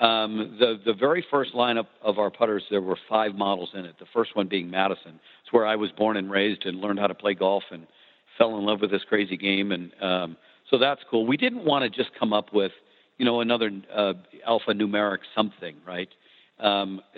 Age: 50-69